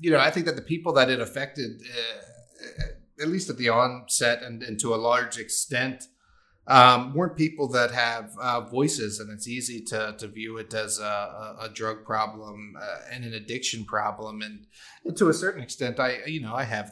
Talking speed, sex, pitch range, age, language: 200 wpm, male, 110-135 Hz, 30-49, English